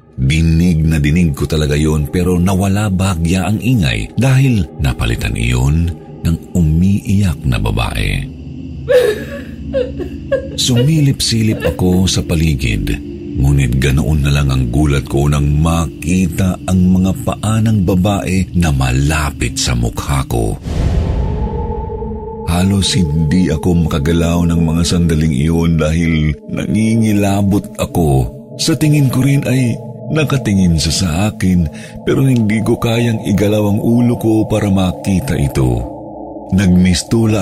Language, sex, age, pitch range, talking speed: Filipino, male, 50-69, 80-105 Hz, 115 wpm